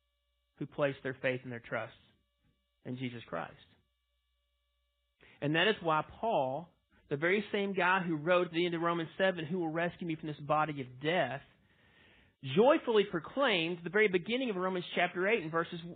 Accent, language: American, English